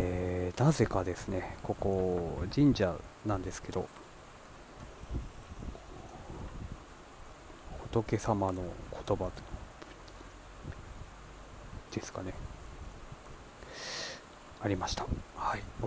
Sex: male